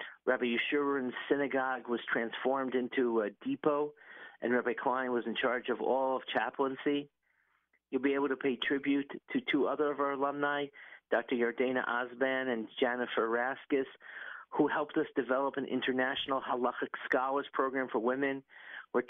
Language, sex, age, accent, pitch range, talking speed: English, male, 50-69, American, 125-140 Hz, 150 wpm